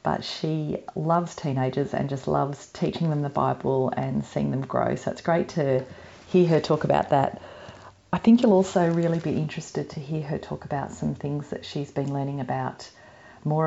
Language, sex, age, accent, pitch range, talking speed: English, female, 40-59, Australian, 140-175 Hz, 195 wpm